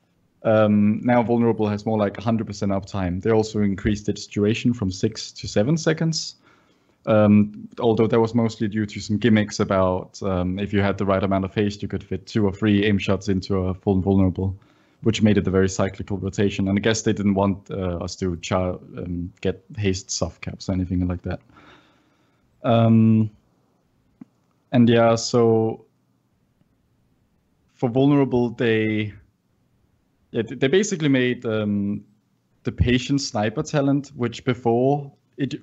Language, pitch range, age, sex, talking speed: English, 100-115 Hz, 20-39, male, 160 wpm